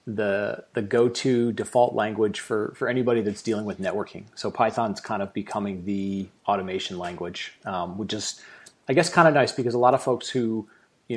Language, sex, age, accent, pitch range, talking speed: English, male, 30-49, American, 105-125 Hz, 190 wpm